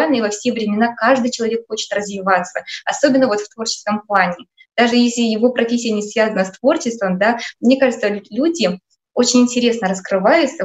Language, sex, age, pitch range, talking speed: Russian, female, 20-39, 200-245 Hz, 160 wpm